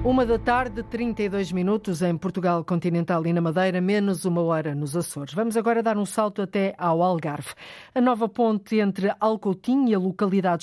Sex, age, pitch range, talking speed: female, 50-69, 175-205 Hz, 180 wpm